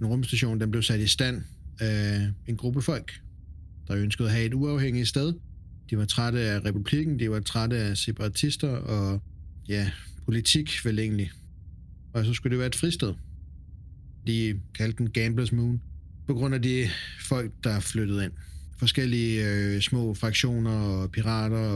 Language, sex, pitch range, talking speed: Danish, male, 100-120 Hz, 155 wpm